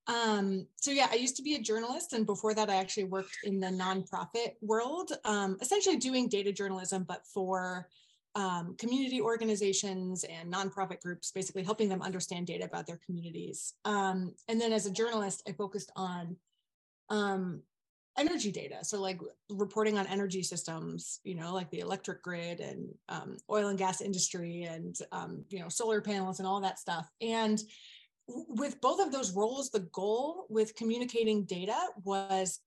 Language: English